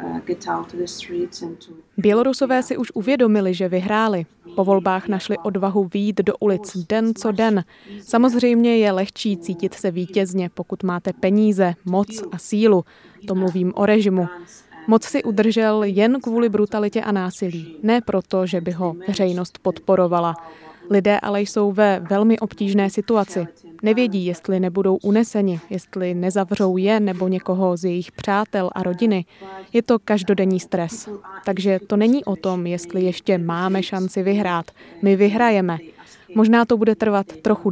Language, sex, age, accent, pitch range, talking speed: Czech, female, 20-39, native, 185-215 Hz, 140 wpm